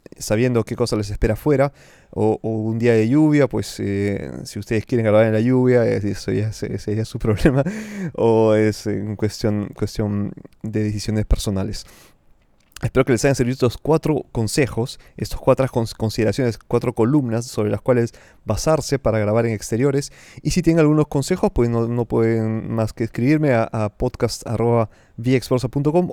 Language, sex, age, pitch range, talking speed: Spanish, male, 20-39, 110-130 Hz, 165 wpm